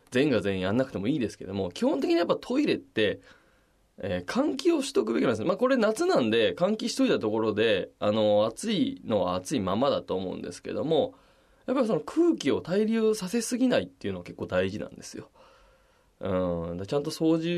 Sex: male